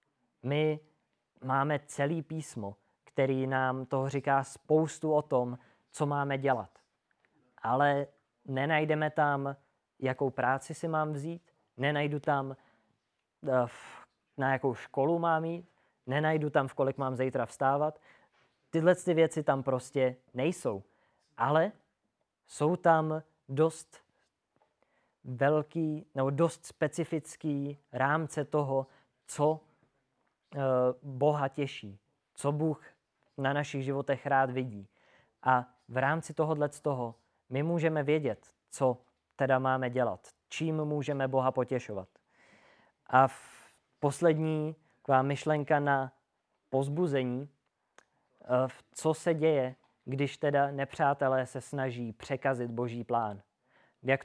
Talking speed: 110 wpm